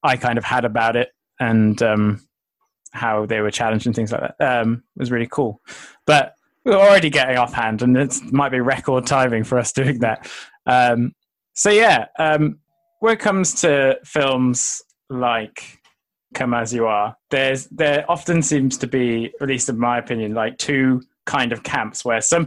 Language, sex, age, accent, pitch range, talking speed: English, male, 20-39, British, 120-145 Hz, 180 wpm